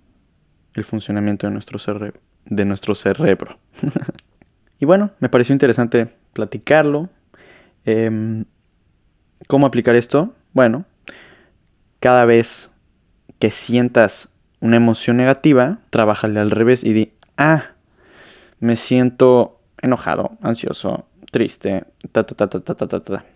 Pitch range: 105-130 Hz